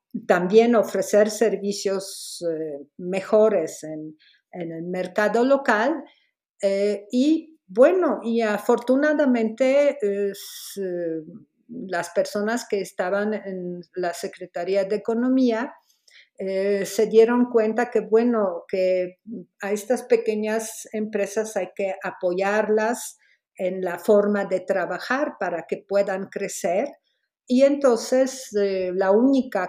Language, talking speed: Spanish, 105 wpm